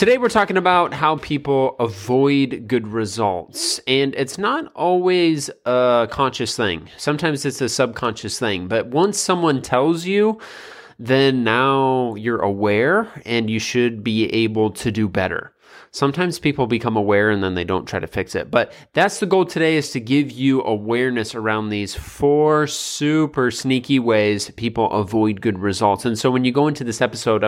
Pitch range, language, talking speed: 110-135 Hz, English, 170 wpm